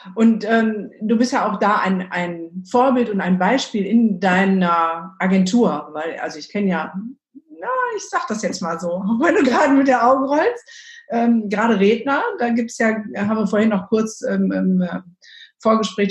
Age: 50-69